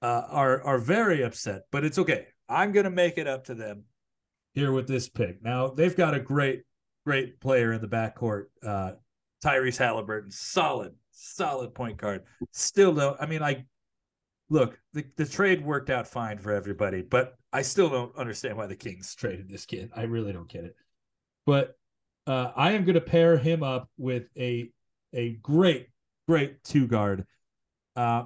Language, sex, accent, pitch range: English, male, American, 120-165 Hz